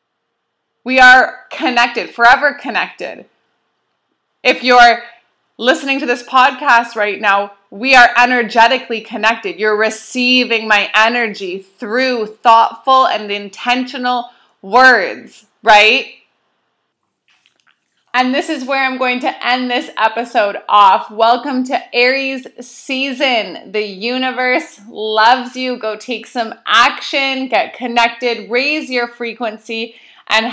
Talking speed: 110 wpm